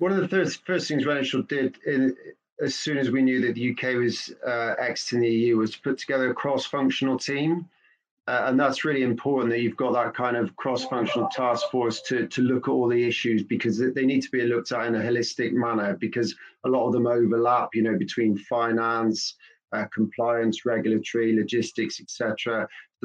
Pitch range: 115-130 Hz